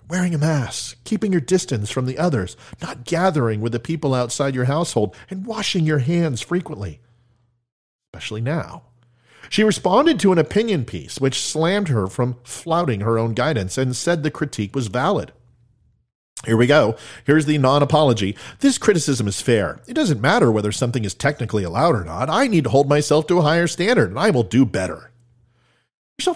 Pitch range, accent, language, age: 120-170 Hz, American, English, 40-59